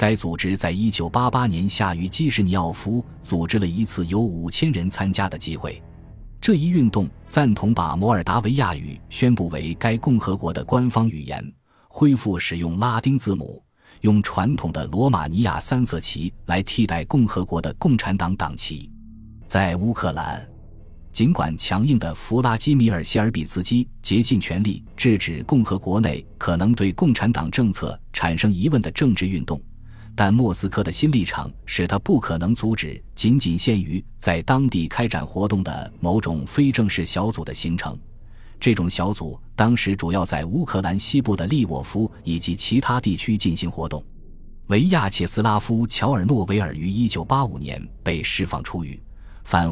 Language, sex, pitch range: Chinese, male, 85-115 Hz